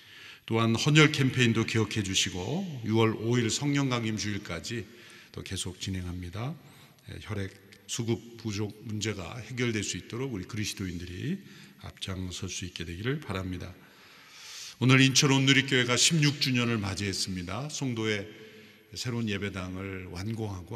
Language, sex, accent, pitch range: Korean, male, native, 95-120 Hz